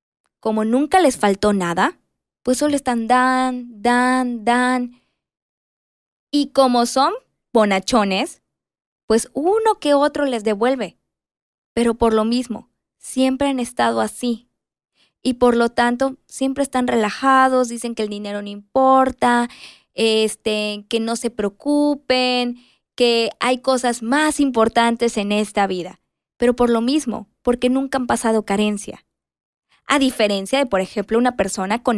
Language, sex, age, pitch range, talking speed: Spanish, female, 20-39, 215-265 Hz, 135 wpm